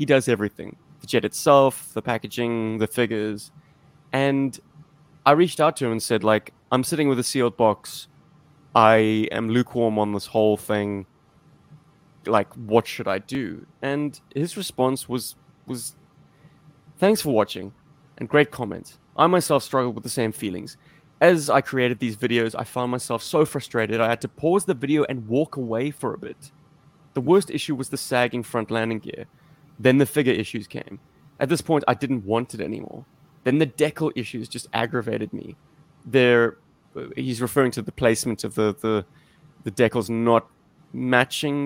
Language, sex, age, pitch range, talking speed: English, male, 20-39, 115-150 Hz, 170 wpm